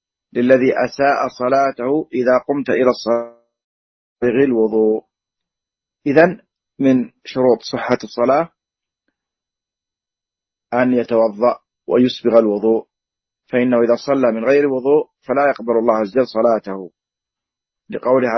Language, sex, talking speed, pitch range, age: Arabic, male, 95 wpm, 115-135 Hz, 40-59